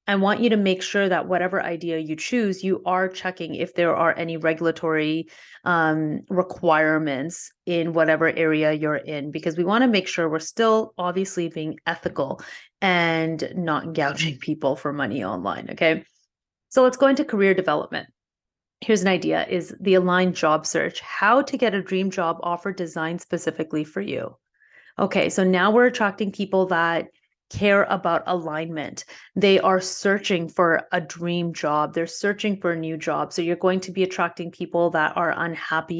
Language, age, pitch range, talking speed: English, 30-49, 165-200 Hz, 170 wpm